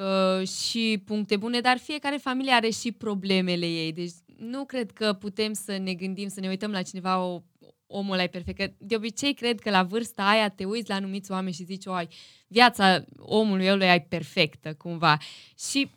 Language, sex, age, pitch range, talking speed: Romanian, female, 20-39, 180-225 Hz, 190 wpm